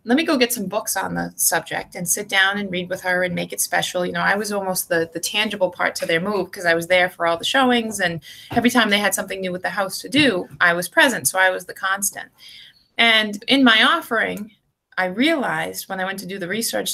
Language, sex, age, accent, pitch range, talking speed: English, female, 20-39, American, 190-250 Hz, 260 wpm